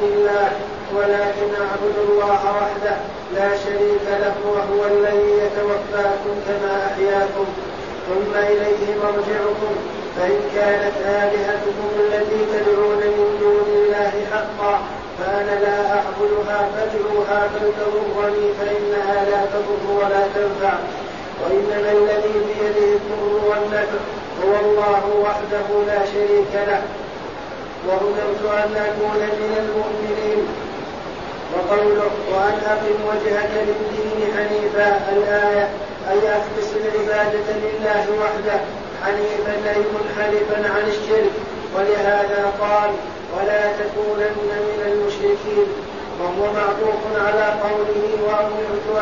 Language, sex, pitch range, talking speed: Arabic, male, 205-210 Hz, 95 wpm